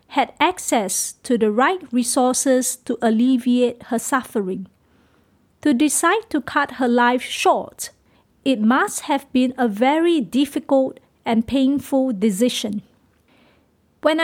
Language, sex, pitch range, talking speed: English, female, 240-295 Hz, 120 wpm